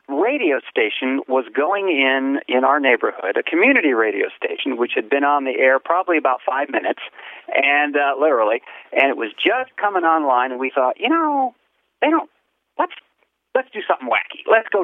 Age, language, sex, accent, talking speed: 40-59, English, male, American, 180 wpm